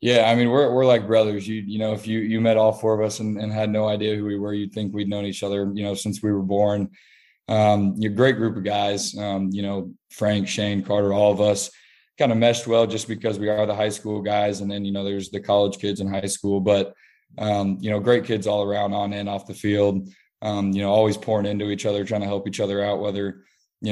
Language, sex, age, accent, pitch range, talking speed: English, male, 20-39, American, 100-110 Hz, 265 wpm